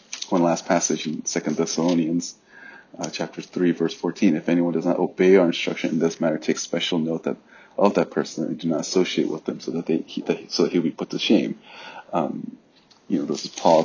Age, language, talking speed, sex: 30-49, English, 220 wpm, male